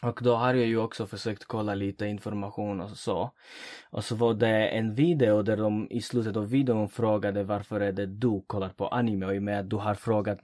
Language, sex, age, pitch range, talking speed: English, male, 20-39, 100-125 Hz, 230 wpm